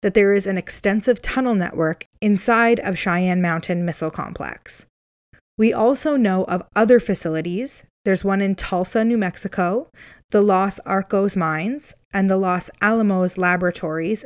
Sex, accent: female, American